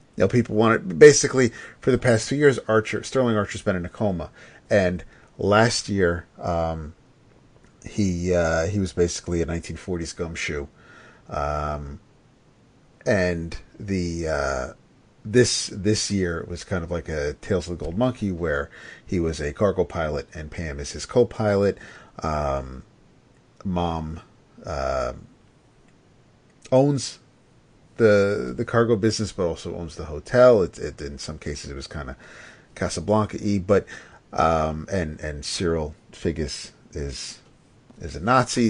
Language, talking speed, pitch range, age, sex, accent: English, 145 wpm, 80-110 Hz, 40-59, male, American